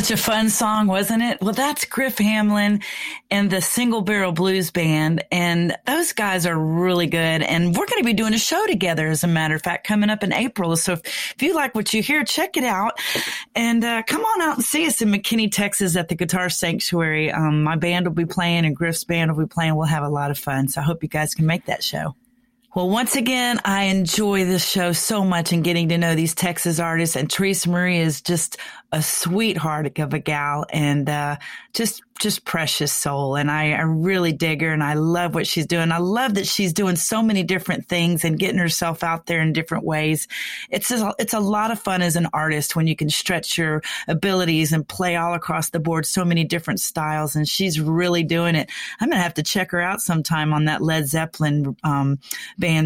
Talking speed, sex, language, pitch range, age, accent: 225 wpm, female, English, 160-205 Hz, 30-49, American